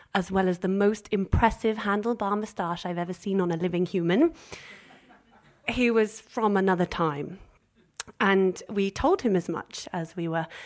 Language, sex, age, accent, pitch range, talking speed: English, female, 30-49, British, 180-230 Hz, 165 wpm